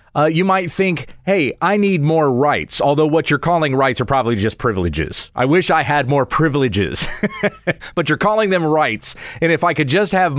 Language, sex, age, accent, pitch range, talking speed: English, male, 30-49, American, 125-180 Hz, 200 wpm